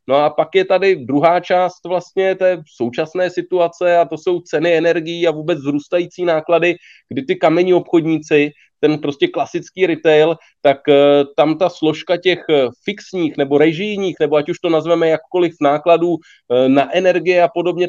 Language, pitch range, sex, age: Czech, 150-185 Hz, male, 30-49